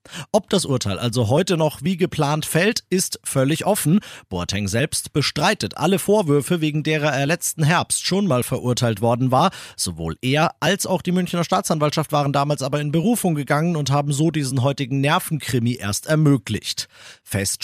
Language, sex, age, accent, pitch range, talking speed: German, male, 40-59, German, 130-170 Hz, 165 wpm